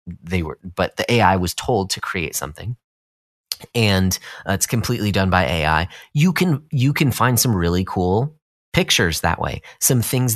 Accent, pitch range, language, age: American, 85-110 Hz, English, 30-49